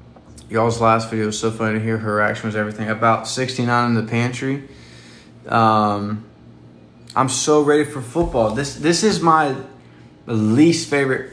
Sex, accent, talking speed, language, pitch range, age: male, American, 155 wpm, English, 100-130 Hz, 20-39